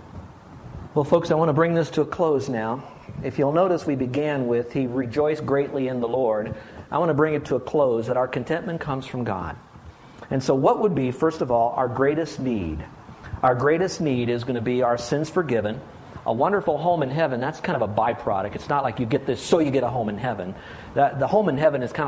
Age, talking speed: 50-69, 235 wpm